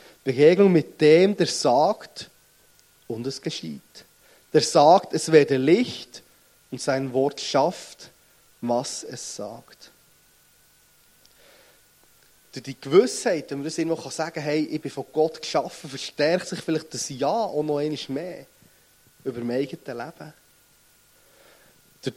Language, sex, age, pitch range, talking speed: German, male, 30-49, 135-170 Hz, 135 wpm